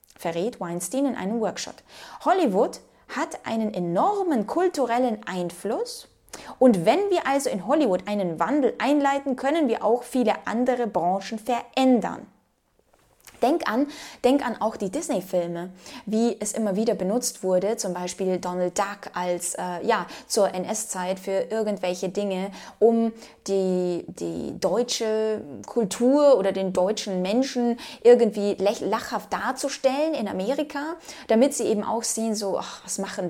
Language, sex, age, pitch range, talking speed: German, female, 20-39, 190-255 Hz, 135 wpm